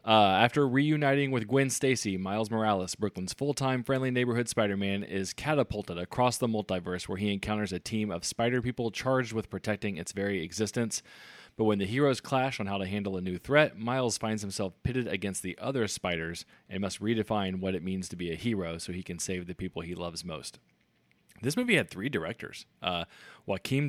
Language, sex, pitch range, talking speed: English, male, 95-120 Hz, 195 wpm